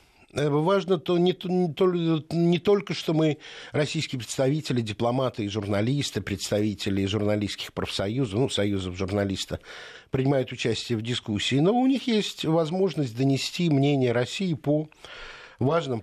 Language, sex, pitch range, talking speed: Russian, male, 115-150 Hz, 125 wpm